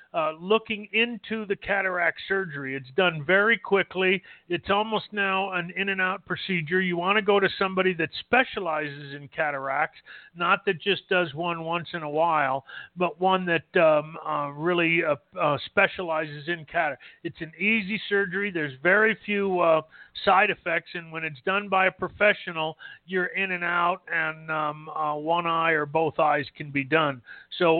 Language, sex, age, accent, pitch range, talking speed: English, male, 40-59, American, 155-195 Hz, 175 wpm